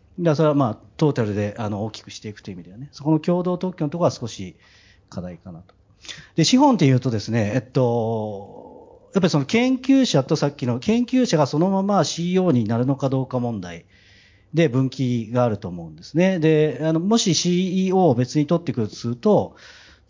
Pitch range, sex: 105-165 Hz, male